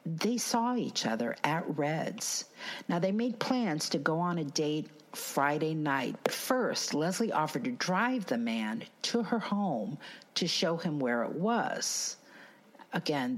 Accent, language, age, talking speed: American, English, 50-69, 155 wpm